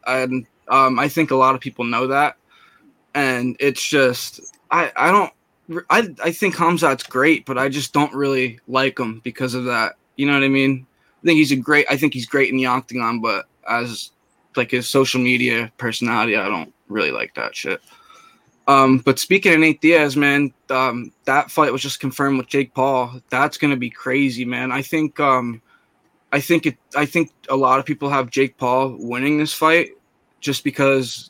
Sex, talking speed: male, 195 wpm